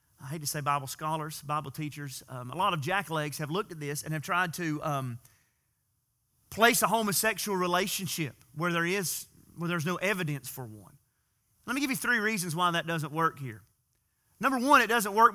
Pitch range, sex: 150-215 Hz, male